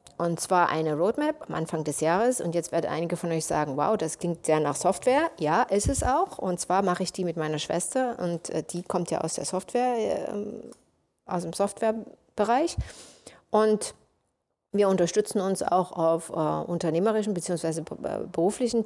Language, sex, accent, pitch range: English, female, German, 165-210 Hz